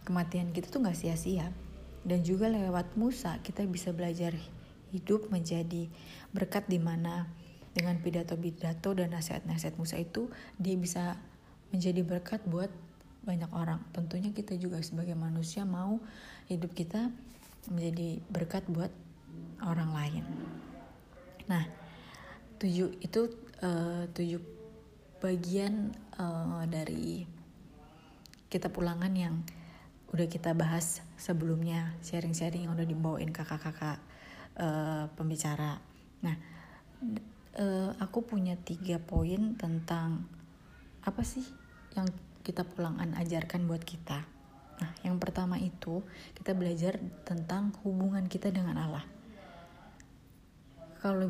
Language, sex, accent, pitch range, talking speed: Indonesian, female, native, 165-190 Hz, 100 wpm